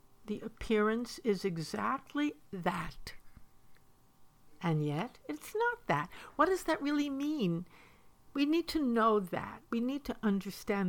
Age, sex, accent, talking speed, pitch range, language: 60-79, female, American, 130 wpm, 175-235 Hz, English